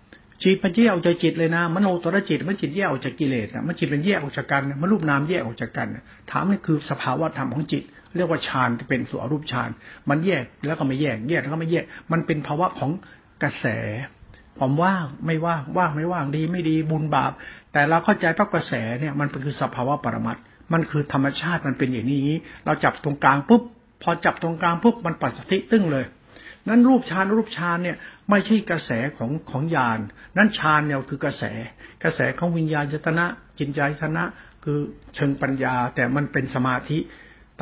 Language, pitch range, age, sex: Thai, 135-170 Hz, 60-79, male